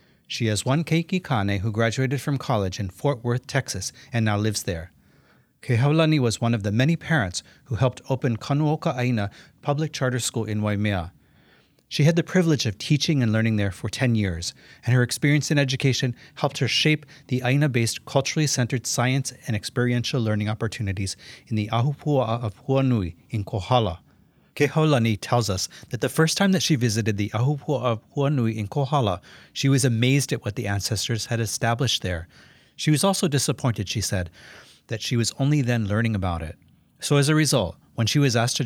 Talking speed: 185 wpm